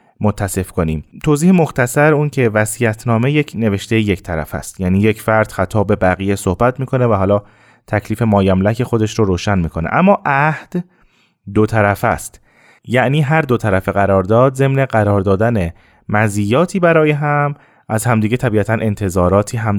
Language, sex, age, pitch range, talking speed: Persian, male, 30-49, 100-125 Hz, 150 wpm